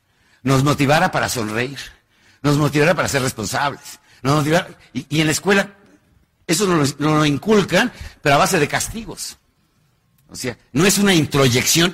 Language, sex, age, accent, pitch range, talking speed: Spanish, male, 50-69, Mexican, 125-180 Hz, 165 wpm